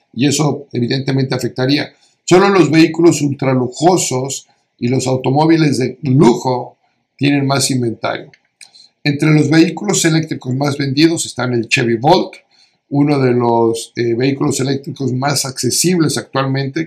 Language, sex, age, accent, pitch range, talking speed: Spanish, male, 50-69, Mexican, 130-160 Hz, 125 wpm